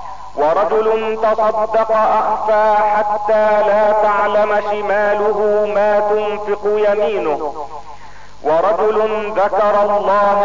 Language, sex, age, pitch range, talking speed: Arabic, male, 40-59, 205-220 Hz, 75 wpm